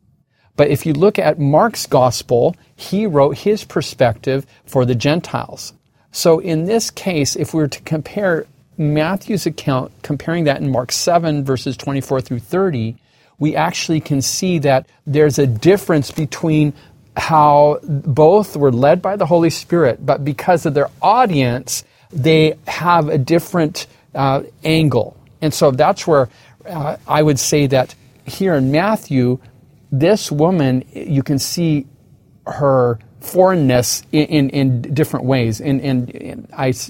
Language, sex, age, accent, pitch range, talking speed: English, male, 40-59, American, 130-155 Hz, 145 wpm